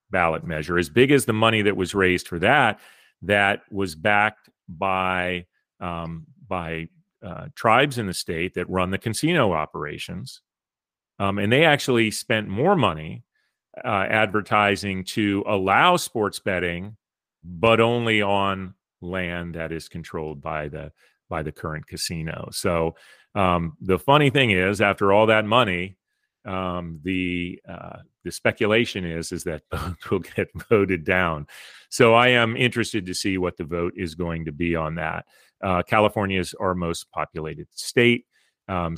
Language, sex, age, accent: English, male, 40-59, American